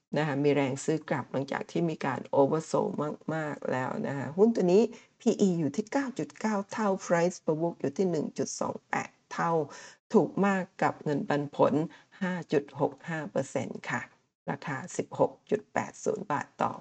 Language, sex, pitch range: Thai, female, 155-210 Hz